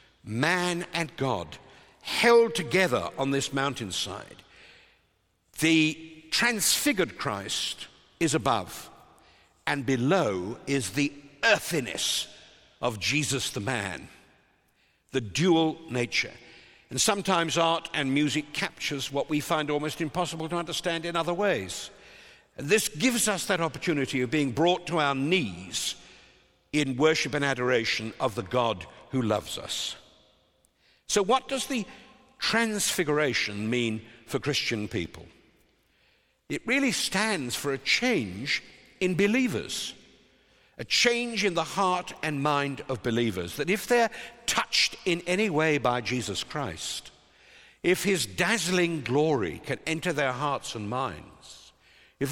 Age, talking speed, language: 60-79, 125 wpm, English